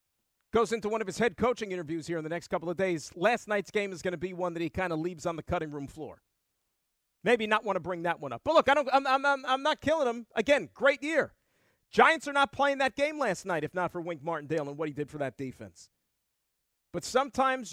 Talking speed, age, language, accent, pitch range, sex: 260 wpm, 40-59, English, American, 145-210 Hz, male